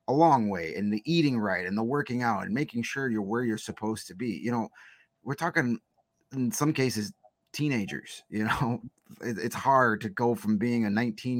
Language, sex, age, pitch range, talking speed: English, male, 30-49, 105-125 Hz, 195 wpm